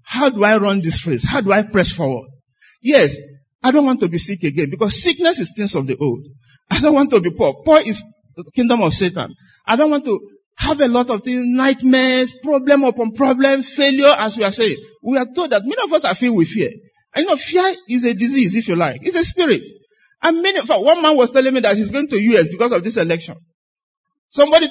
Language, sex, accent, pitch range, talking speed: English, male, Nigerian, 185-285 Hz, 235 wpm